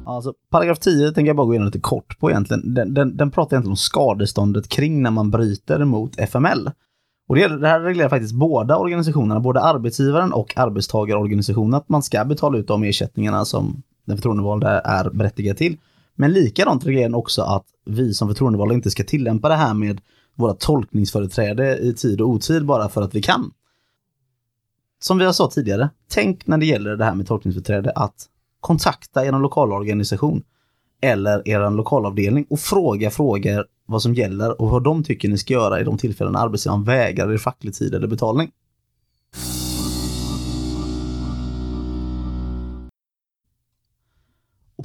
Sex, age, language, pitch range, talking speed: male, 20-39, Swedish, 105-140 Hz, 160 wpm